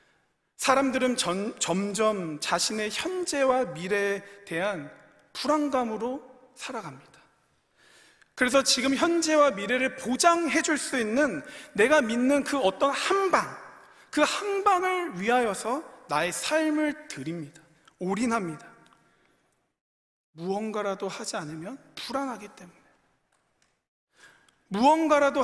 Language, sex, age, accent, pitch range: Korean, male, 40-59, native, 195-295 Hz